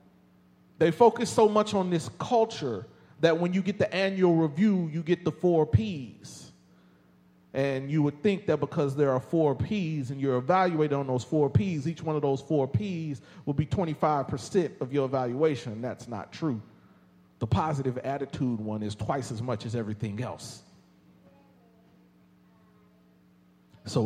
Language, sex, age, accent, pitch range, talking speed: English, male, 40-59, American, 110-160 Hz, 155 wpm